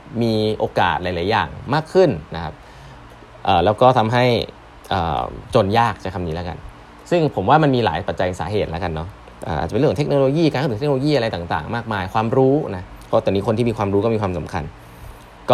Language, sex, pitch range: Thai, male, 90-120 Hz